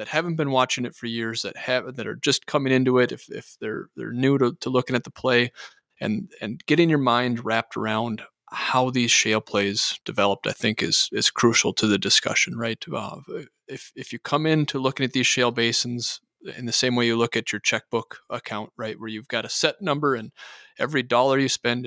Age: 30-49